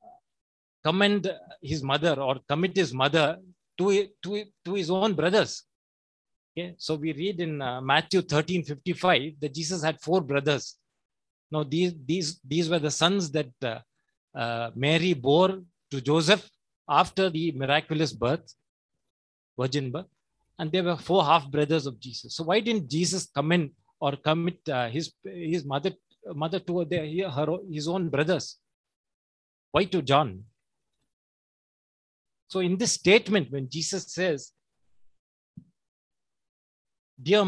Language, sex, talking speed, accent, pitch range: English, male, 135 wpm, Indian, 140-185 Hz